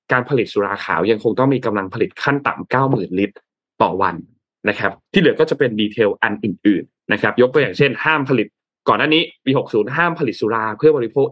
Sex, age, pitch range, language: male, 20-39, 115-160 Hz, Thai